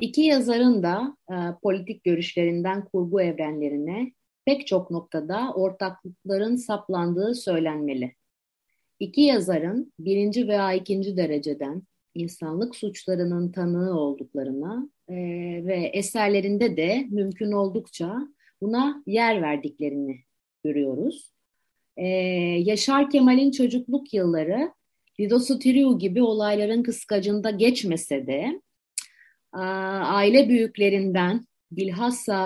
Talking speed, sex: 85 wpm, female